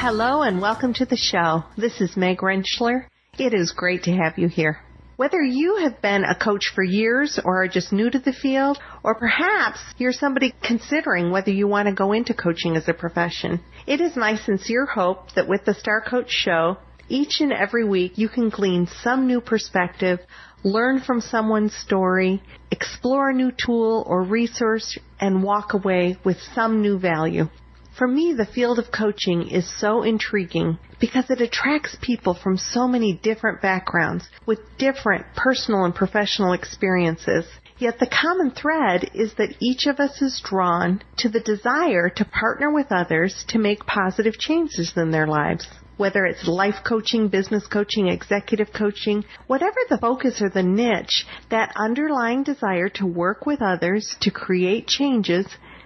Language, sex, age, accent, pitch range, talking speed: English, female, 40-59, American, 185-245 Hz, 170 wpm